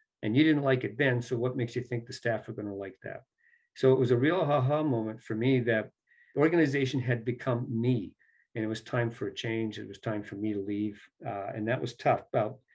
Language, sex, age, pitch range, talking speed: English, male, 50-69, 110-135 Hz, 250 wpm